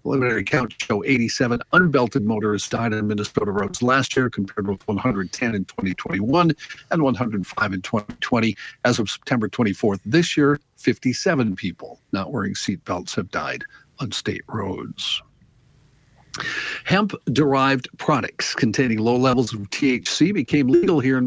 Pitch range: 115-140 Hz